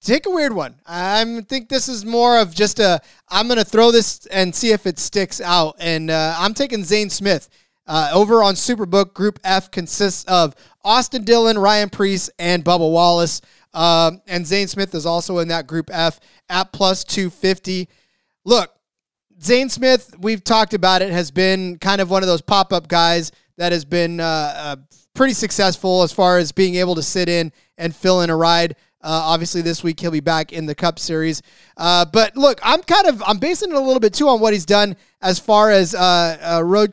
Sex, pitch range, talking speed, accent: male, 170-215 Hz, 205 wpm, American